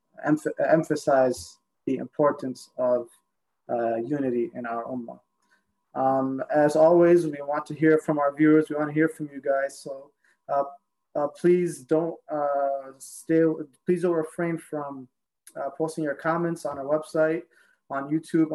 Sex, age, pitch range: male, 20-39, 135-155 Hz